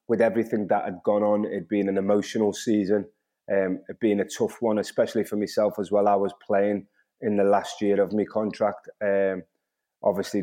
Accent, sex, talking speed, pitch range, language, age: British, male, 195 wpm, 95-105 Hz, English, 30-49